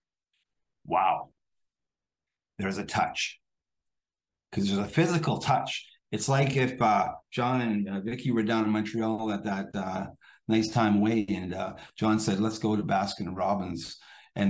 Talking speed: 155 wpm